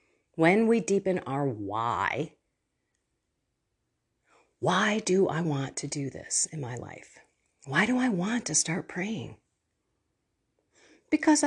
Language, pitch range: English, 130-185 Hz